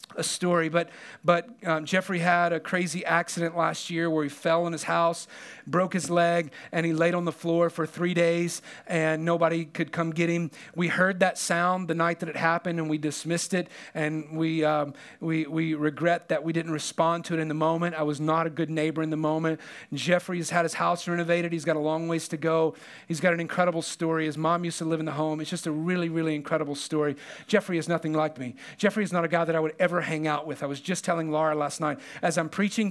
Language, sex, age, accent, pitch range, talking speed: English, male, 40-59, American, 155-175 Hz, 245 wpm